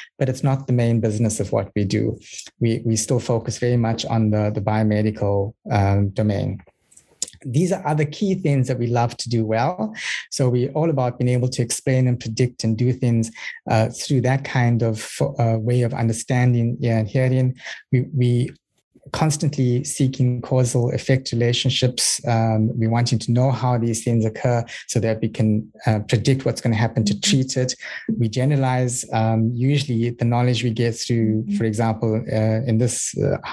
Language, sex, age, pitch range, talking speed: English, male, 20-39, 115-130 Hz, 185 wpm